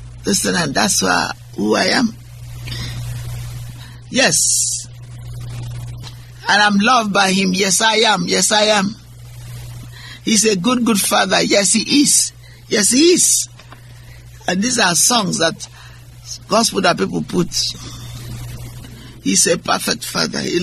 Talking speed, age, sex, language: 125 wpm, 60-79, male, English